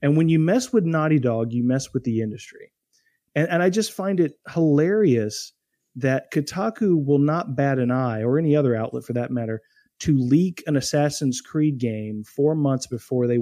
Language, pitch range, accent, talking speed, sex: English, 125-170 Hz, American, 190 wpm, male